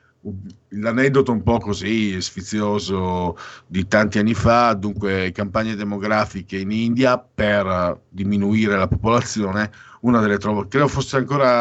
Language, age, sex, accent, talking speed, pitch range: Italian, 50-69, male, native, 120 wpm, 100-130 Hz